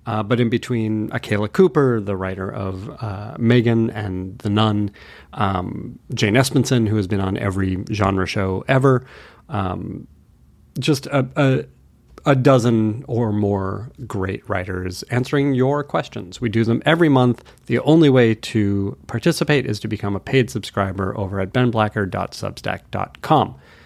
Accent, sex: American, male